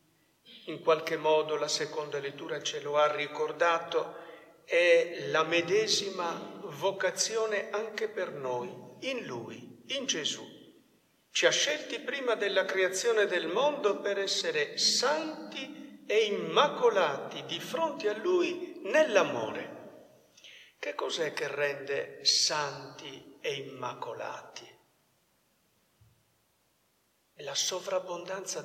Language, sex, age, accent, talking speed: Italian, male, 60-79, native, 105 wpm